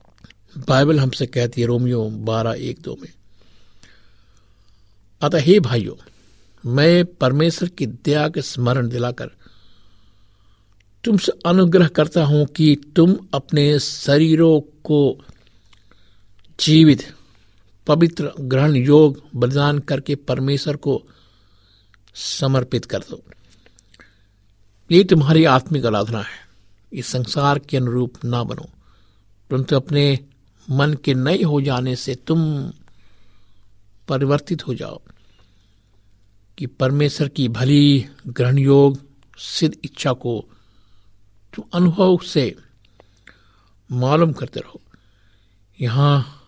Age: 60-79